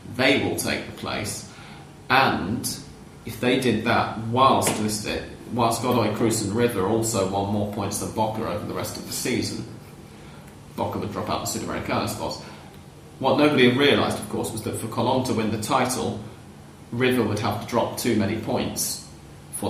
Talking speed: 175 wpm